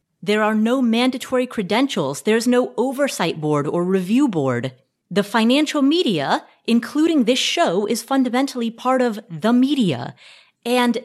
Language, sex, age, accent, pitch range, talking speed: English, female, 30-49, American, 190-250 Hz, 135 wpm